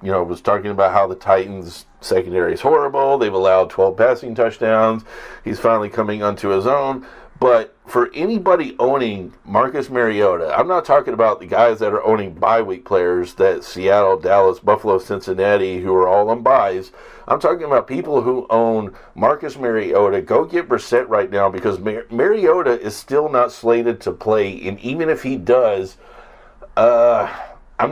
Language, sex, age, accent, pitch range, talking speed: English, male, 50-69, American, 105-140 Hz, 170 wpm